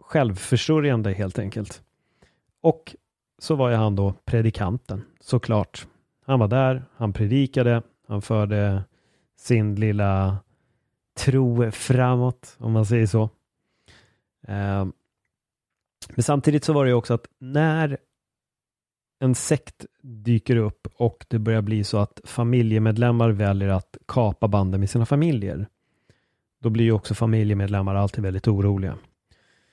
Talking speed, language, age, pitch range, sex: 125 wpm, English, 30-49, 100-120 Hz, male